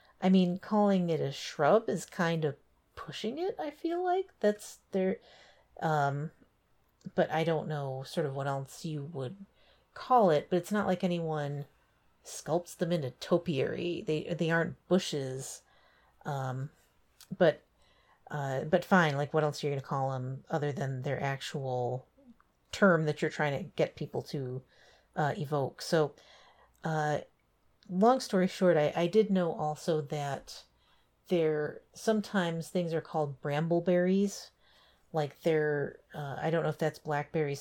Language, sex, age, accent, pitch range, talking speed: English, female, 40-59, American, 140-180 Hz, 155 wpm